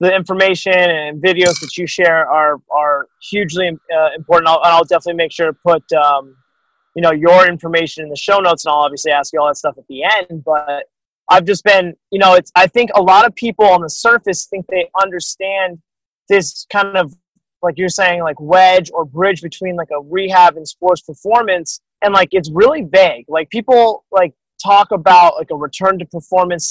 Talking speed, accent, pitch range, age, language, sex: 200 wpm, American, 165-190 Hz, 20-39, English, male